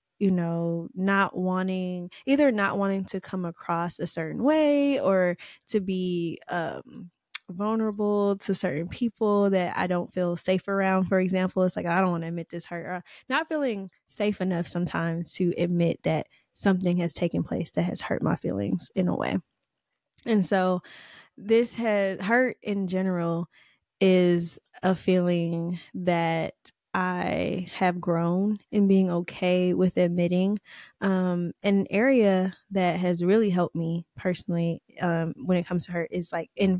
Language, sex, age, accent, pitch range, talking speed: English, female, 10-29, American, 175-195 Hz, 155 wpm